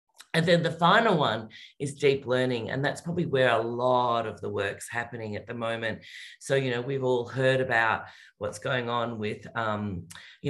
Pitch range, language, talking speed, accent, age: 120-145 Hz, English, 195 wpm, Australian, 40-59